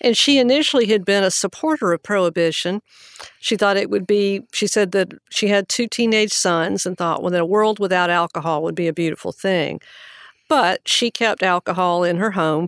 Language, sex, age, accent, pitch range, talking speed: English, female, 50-69, American, 170-205 Hz, 200 wpm